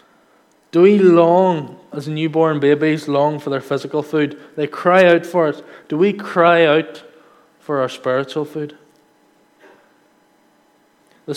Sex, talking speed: male, 130 wpm